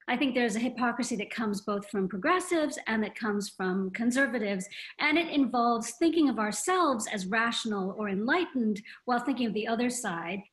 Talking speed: 175 wpm